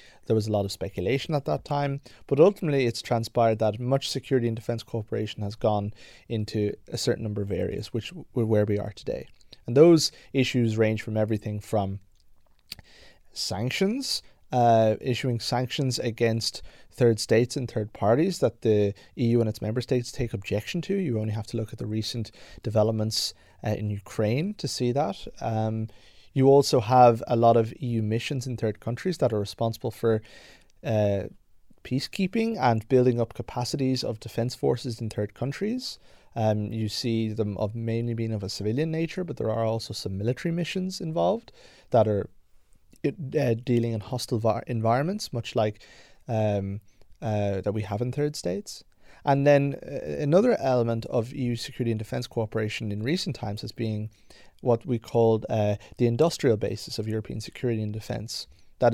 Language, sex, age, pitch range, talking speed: Danish, male, 30-49, 110-125 Hz, 170 wpm